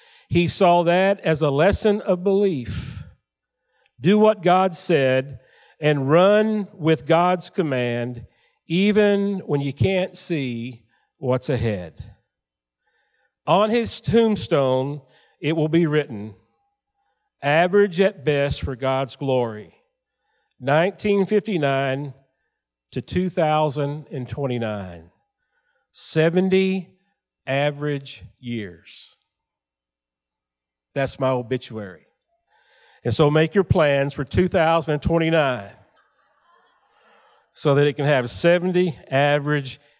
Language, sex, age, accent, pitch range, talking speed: English, male, 50-69, American, 125-195 Hz, 90 wpm